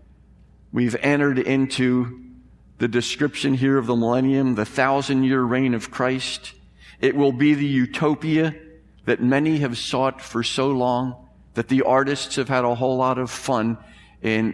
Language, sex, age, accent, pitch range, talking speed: English, male, 50-69, American, 110-135 Hz, 155 wpm